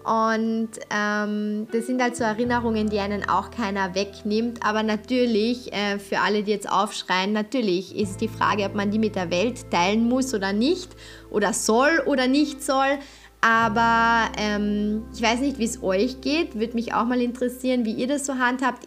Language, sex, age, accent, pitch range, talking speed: German, female, 20-39, German, 210-245 Hz, 185 wpm